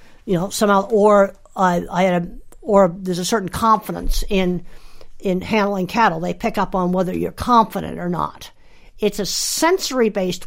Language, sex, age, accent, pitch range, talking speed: English, female, 50-69, American, 190-225 Hz, 185 wpm